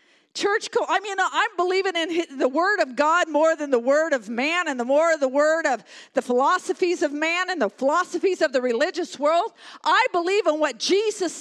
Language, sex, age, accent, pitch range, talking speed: English, female, 50-69, American, 280-385 Hz, 210 wpm